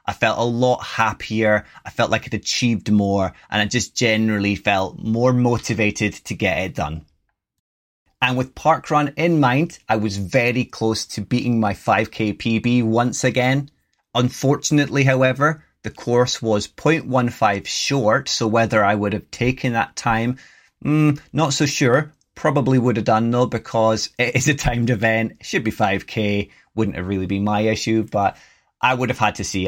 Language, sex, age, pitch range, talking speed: English, male, 30-49, 105-125 Hz, 170 wpm